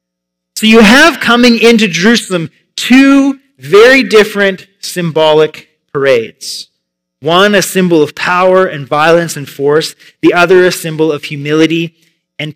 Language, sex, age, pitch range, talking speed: English, male, 30-49, 145-215 Hz, 130 wpm